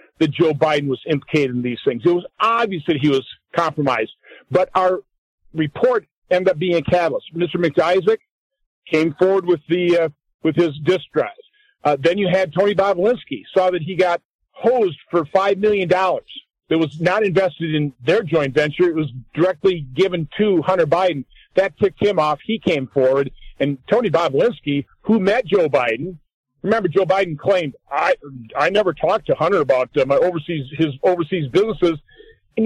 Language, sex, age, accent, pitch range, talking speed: English, male, 40-59, American, 150-195 Hz, 175 wpm